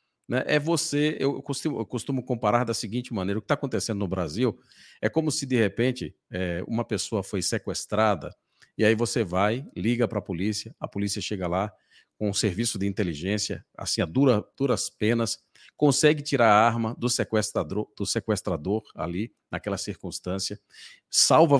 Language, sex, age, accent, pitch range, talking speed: Portuguese, male, 50-69, Brazilian, 110-150 Hz, 155 wpm